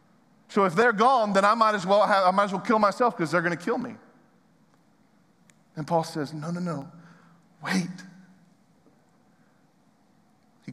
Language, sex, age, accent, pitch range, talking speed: English, male, 40-59, American, 175-220 Hz, 170 wpm